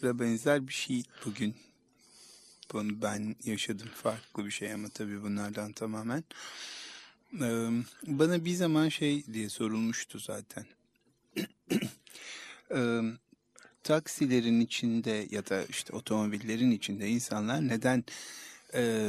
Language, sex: Turkish, male